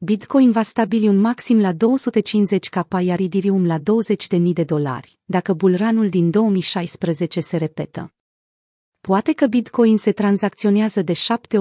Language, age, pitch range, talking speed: Romanian, 30-49, 175-220 Hz, 140 wpm